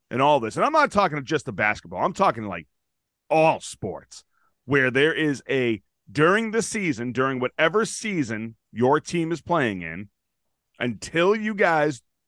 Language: English